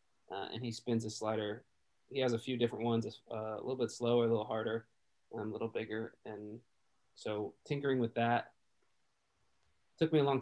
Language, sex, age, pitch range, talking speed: English, male, 20-39, 110-125 Hz, 190 wpm